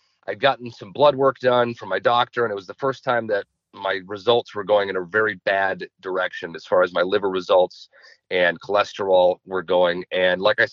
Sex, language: male, English